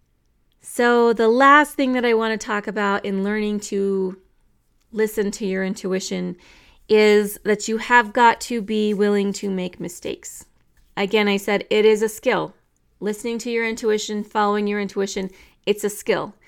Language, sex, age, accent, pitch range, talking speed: English, female, 30-49, American, 190-225 Hz, 165 wpm